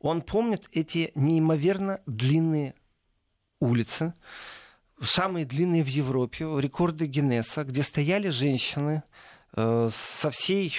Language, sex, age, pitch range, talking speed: Russian, male, 40-59, 135-190 Hz, 95 wpm